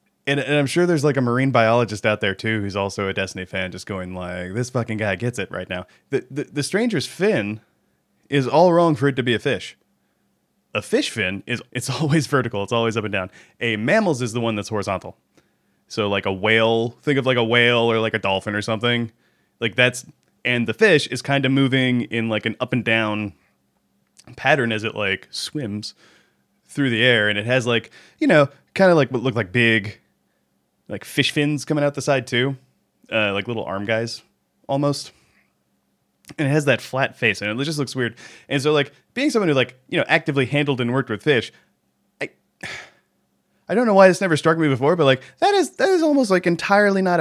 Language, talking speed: English, 215 wpm